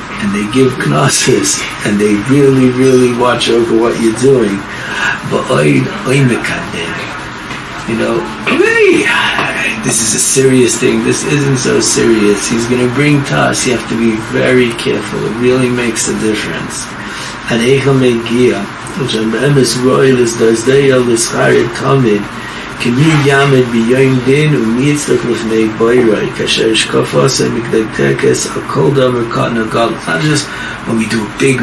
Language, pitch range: English, 115-135 Hz